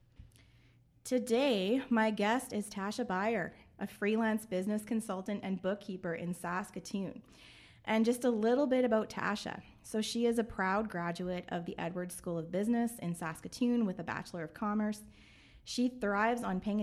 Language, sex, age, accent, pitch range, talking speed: English, female, 20-39, American, 180-225 Hz, 155 wpm